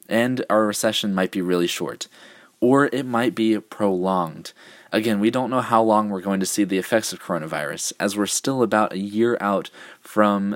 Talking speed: 195 wpm